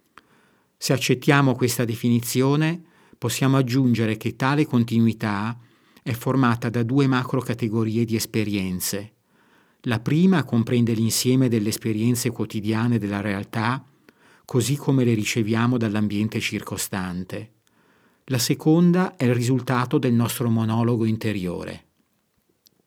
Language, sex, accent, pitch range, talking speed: Italian, male, native, 110-125 Hz, 105 wpm